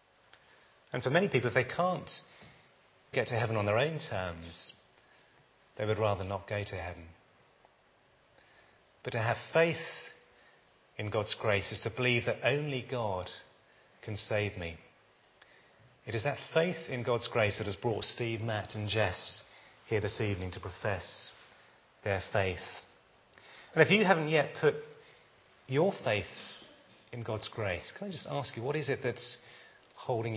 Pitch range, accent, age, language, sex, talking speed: 100-125 Hz, British, 30-49, English, male, 155 wpm